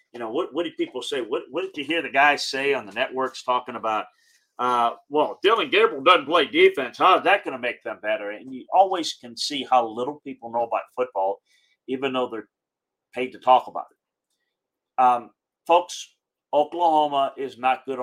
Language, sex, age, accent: English, male, 40-59, American